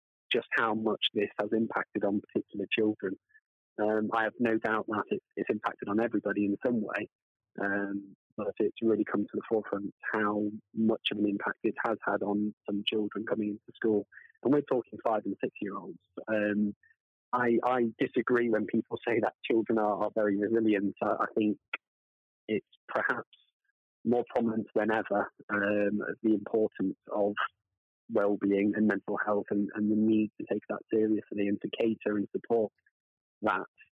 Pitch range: 100-110 Hz